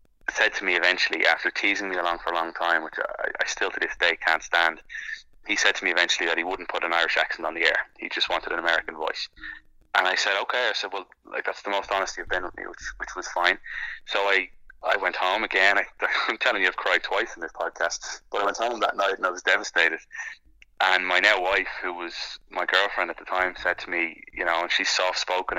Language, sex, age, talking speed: English, male, 20-39, 250 wpm